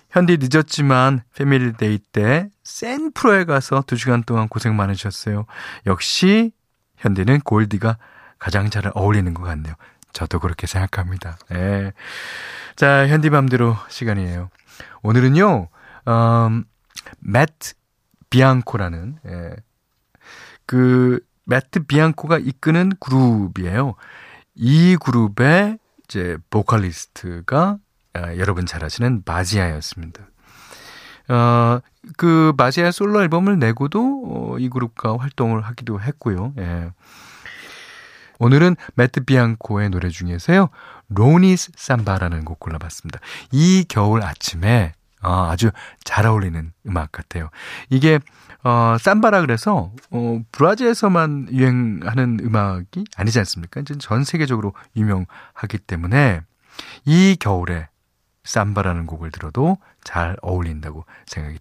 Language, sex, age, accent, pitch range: Korean, male, 40-59, native, 95-140 Hz